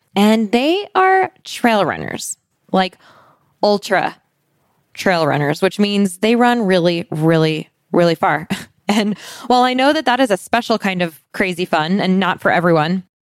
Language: English